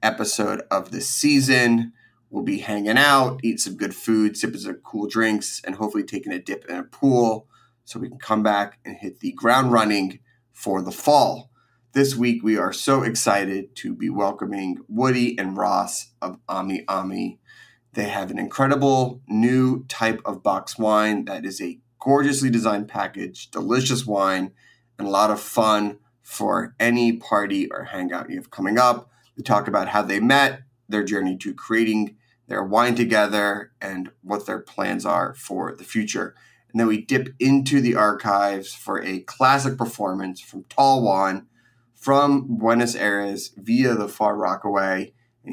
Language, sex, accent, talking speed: English, male, American, 165 wpm